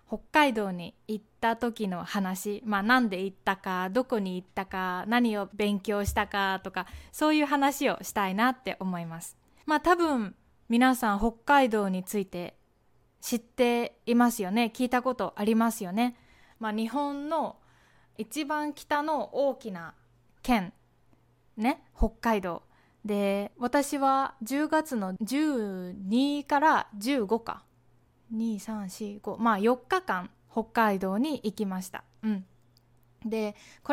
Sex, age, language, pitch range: female, 20-39, Japanese, 200-275 Hz